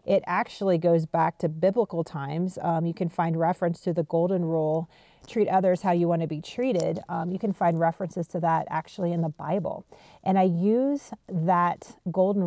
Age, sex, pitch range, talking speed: 30-49, female, 170-205 Hz, 190 wpm